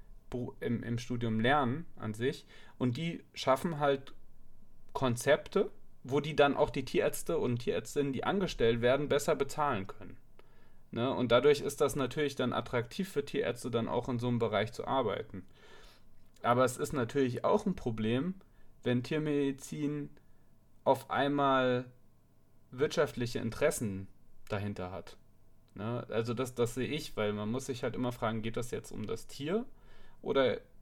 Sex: male